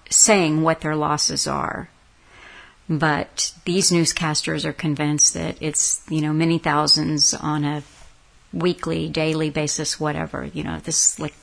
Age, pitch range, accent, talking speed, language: 50-69, 155-180 Hz, American, 140 wpm, English